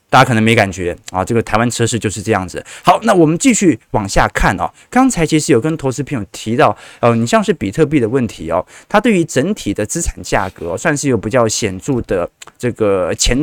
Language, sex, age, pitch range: Chinese, male, 20-39, 110-155 Hz